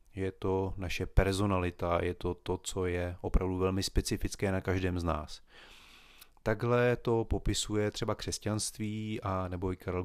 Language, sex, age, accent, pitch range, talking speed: Czech, male, 30-49, native, 90-110 Hz, 150 wpm